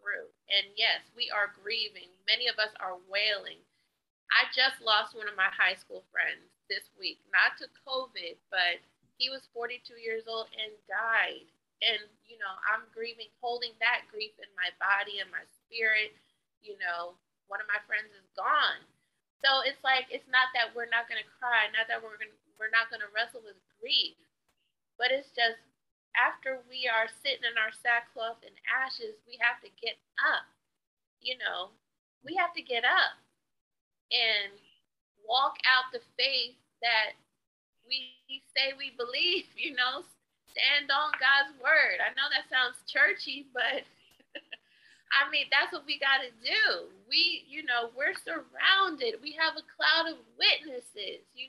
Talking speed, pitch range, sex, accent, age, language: 165 wpm, 225-305 Hz, female, American, 30-49, English